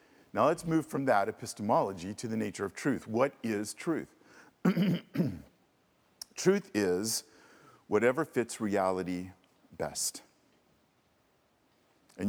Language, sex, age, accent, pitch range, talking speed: English, male, 50-69, American, 85-115 Hz, 105 wpm